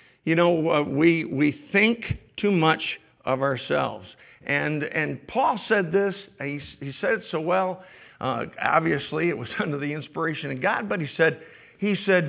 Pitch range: 140-190 Hz